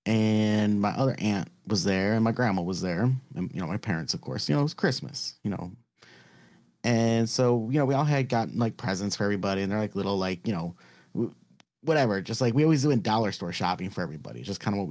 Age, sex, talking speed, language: 30-49, male, 240 wpm, English